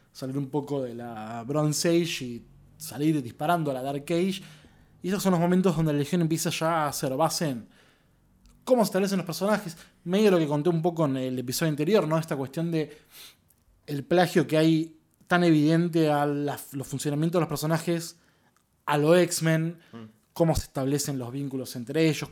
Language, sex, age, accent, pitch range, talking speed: Spanish, male, 20-39, Argentinian, 140-165 Hz, 190 wpm